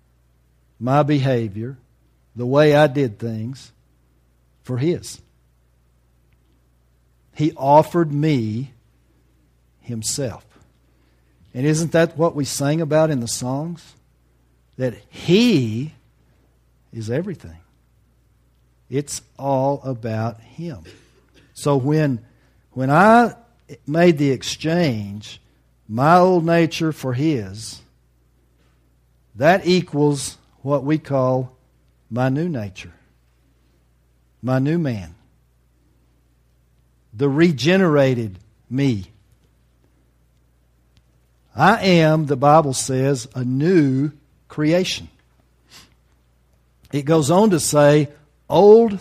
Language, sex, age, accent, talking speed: English, male, 60-79, American, 85 wpm